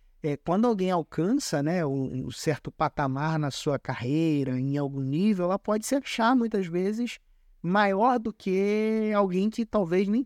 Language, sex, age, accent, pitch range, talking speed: Portuguese, male, 20-39, Brazilian, 135-180 Hz, 160 wpm